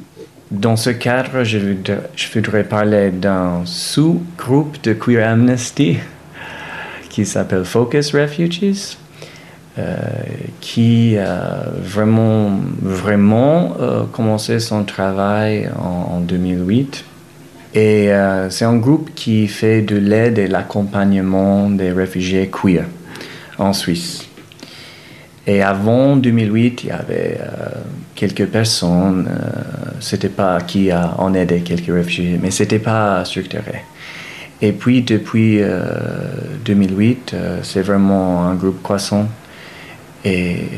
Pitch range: 95-120 Hz